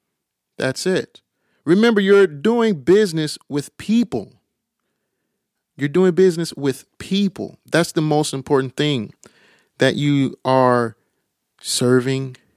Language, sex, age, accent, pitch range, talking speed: English, male, 30-49, American, 120-170 Hz, 105 wpm